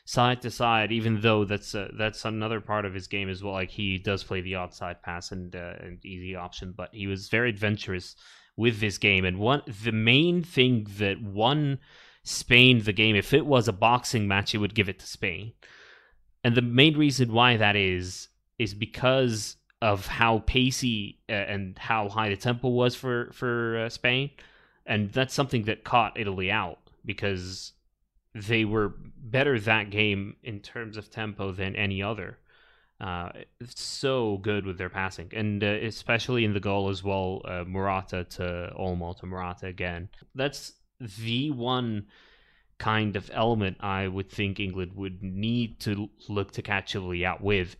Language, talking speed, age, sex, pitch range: English, 175 wpm, 20-39, male, 95-120 Hz